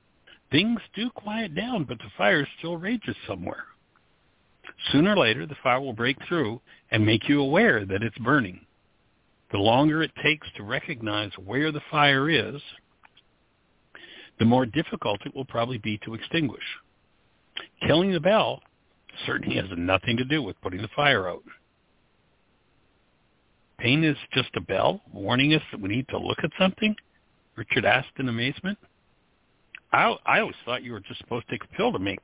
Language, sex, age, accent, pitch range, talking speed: English, male, 60-79, American, 110-155 Hz, 165 wpm